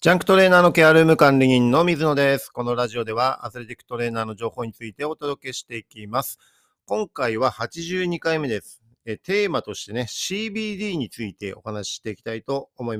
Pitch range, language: 110-165 Hz, Japanese